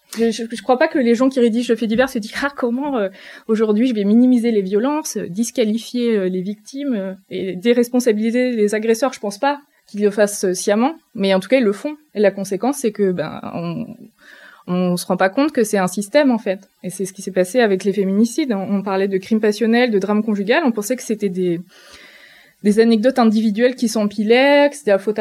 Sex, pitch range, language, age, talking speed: female, 195-240 Hz, French, 20-39, 235 wpm